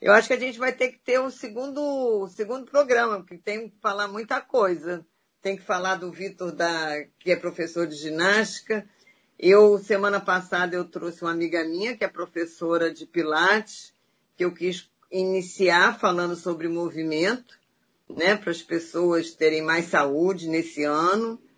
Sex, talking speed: female, 160 wpm